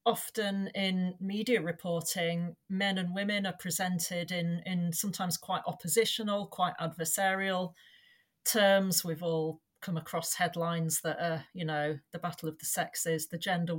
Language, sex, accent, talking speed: English, female, British, 145 wpm